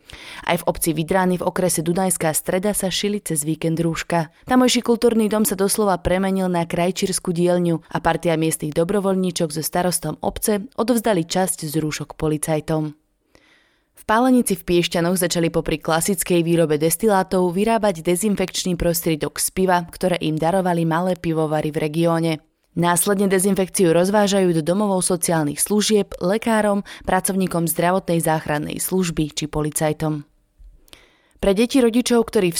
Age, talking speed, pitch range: 20-39, 135 wpm, 160-195 Hz